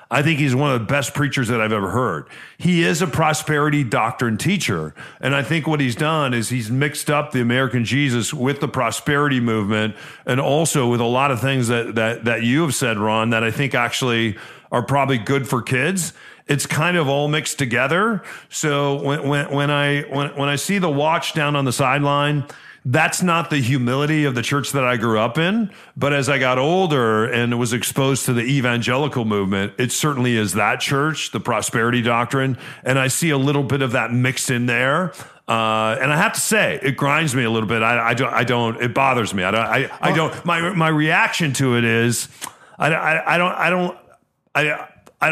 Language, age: English, 40-59